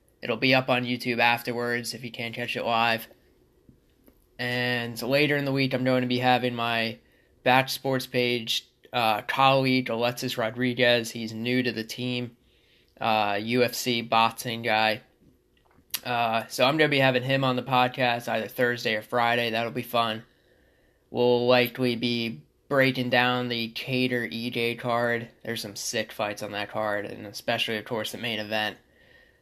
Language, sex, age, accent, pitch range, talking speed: English, male, 20-39, American, 115-125 Hz, 165 wpm